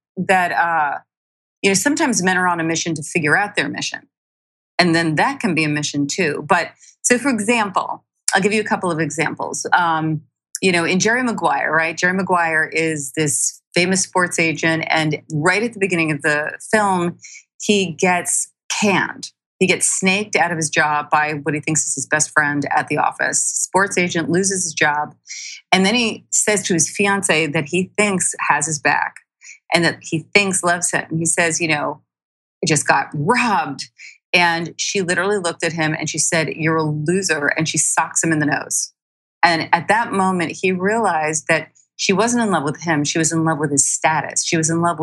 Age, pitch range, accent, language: 40-59, 155-190 Hz, American, English